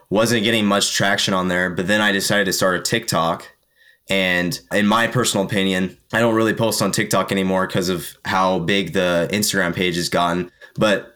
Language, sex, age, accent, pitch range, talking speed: English, male, 20-39, American, 90-105 Hz, 195 wpm